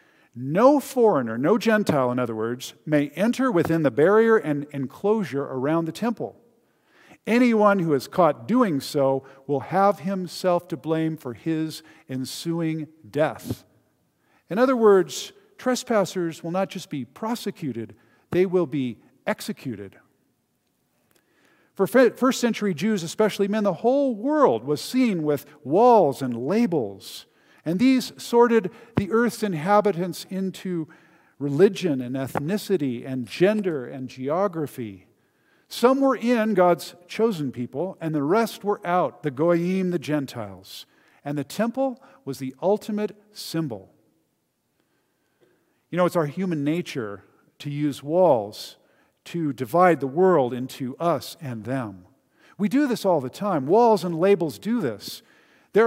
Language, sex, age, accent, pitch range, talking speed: English, male, 50-69, American, 140-215 Hz, 135 wpm